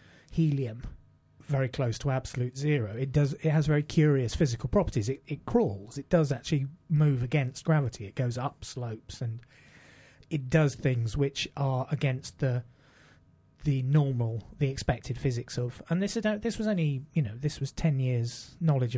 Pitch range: 120-145 Hz